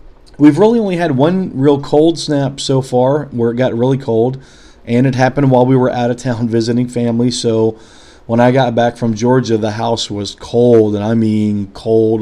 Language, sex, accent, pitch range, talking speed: English, male, American, 110-125 Hz, 200 wpm